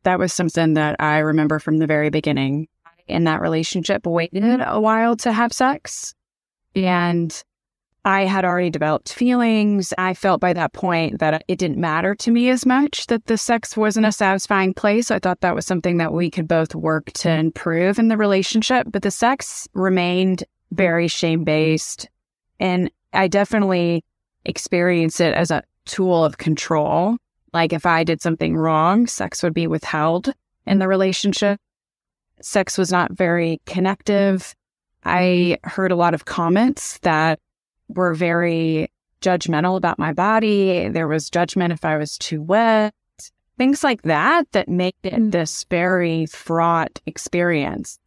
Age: 20-39